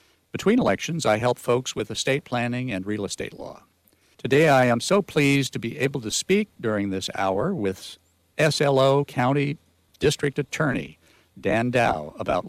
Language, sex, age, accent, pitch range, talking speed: English, male, 60-79, American, 110-140 Hz, 160 wpm